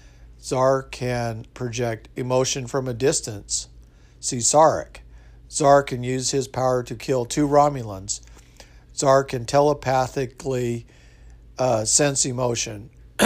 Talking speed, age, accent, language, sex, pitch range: 110 wpm, 50-69, American, English, male, 110-130 Hz